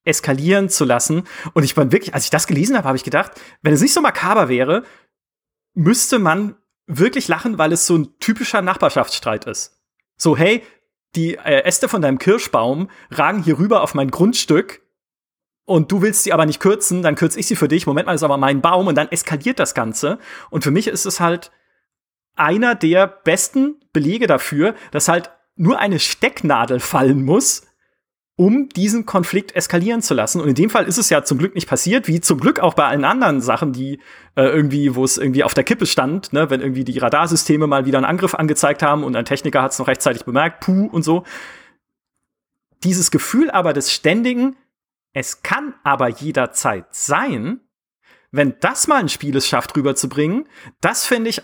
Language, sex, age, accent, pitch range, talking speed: German, male, 30-49, German, 145-210 Hz, 190 wpm